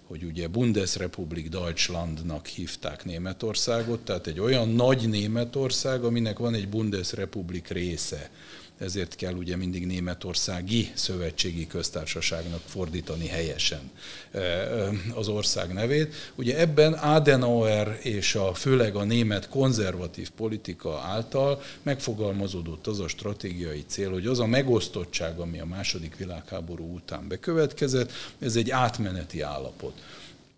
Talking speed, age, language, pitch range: 115 wpm, 50-69, Hungarian, 90-125 Hz